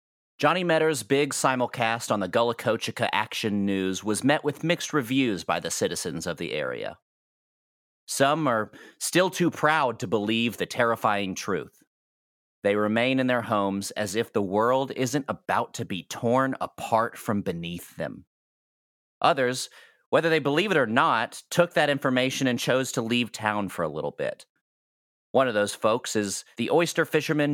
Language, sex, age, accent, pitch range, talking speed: English, male, 40-59, American, 110-155 Hz, 165 wpm